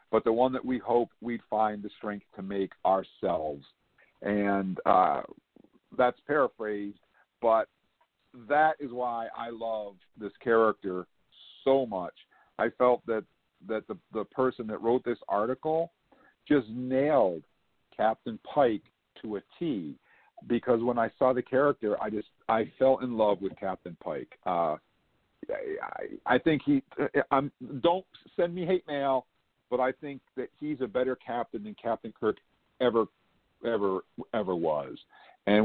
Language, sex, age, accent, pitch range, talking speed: English, male, 50-69, American, 105-130 Hz, 145 wpm